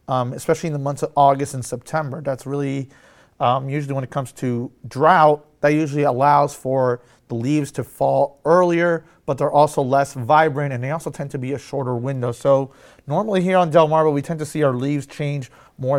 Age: 30-49